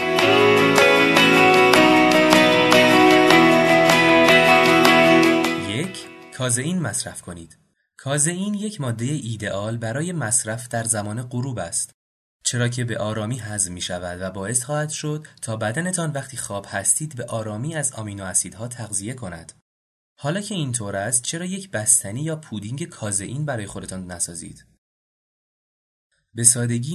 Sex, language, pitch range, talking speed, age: male, Persian, 100-140 Hz, 115 wpm, 30-49